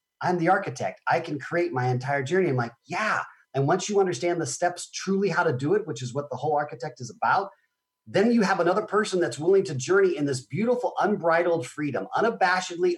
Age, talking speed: 40-59, 215 wpm